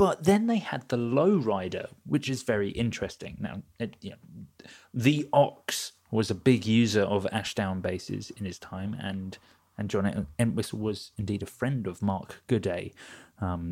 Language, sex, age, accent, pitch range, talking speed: English, male, 30-49, British, 100-125 Hz, 170 wpm